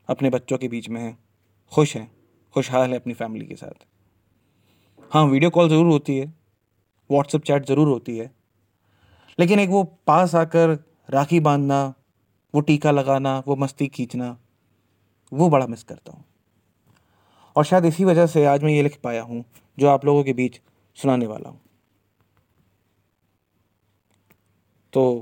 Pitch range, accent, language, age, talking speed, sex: 105-140 Hz, native, Hindi, 30-49, 150 wpm, male